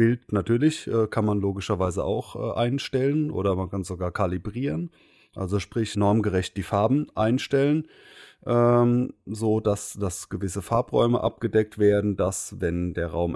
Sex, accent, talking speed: male, German, 140 wpm